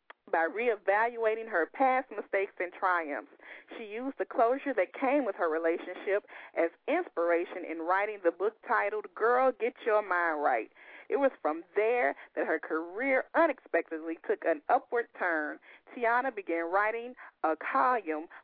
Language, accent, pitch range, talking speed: English, American, 170-245 Hz, 145 wpm